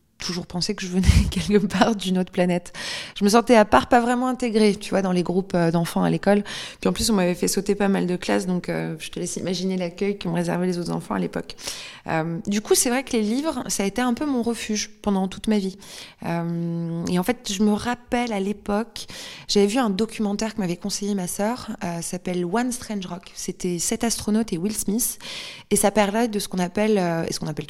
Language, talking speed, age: French, 255 wpm, 20-39